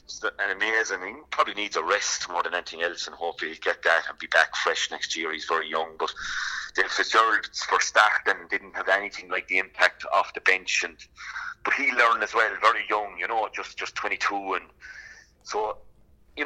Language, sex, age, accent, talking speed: English, male, 30-49, British, 210 wpm